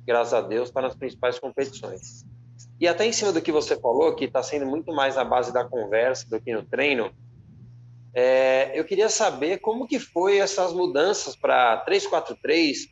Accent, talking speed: Brazilian, 185 wpm